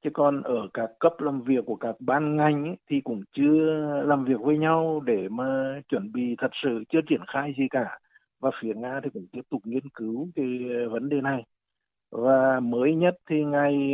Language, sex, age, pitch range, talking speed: Vietnamese, male, 60-79, 125-155 Hz, 200 wpm